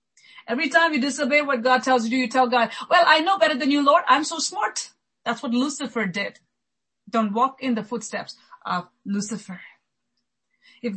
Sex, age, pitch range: female, 30-49, 225-290 Hz